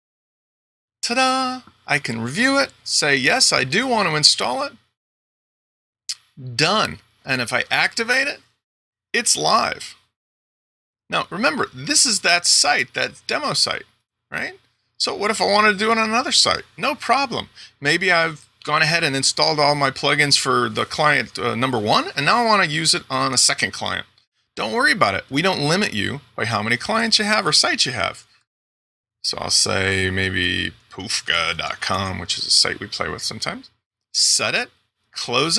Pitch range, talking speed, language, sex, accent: 110-175 Hz, 175 wpm, English, male, American